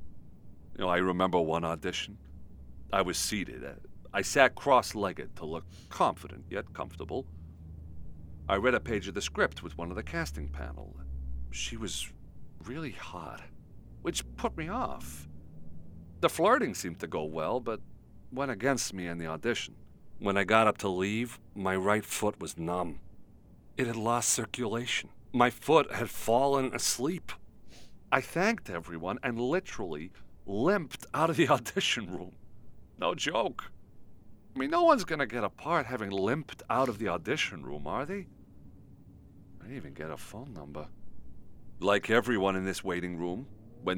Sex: male